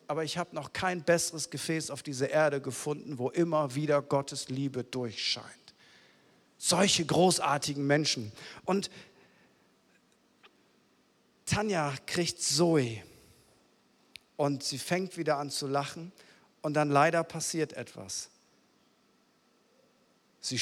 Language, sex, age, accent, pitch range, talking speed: German, male, 50-69, German, 145-190 Hz, 110 wpm